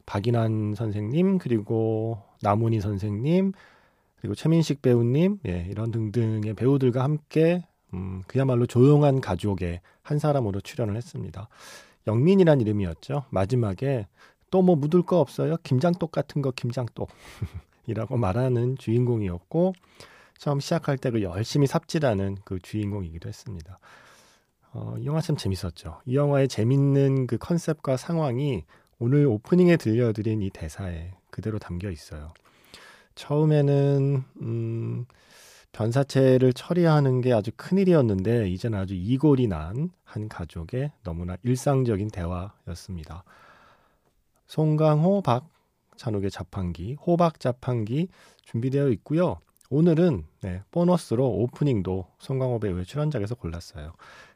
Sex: male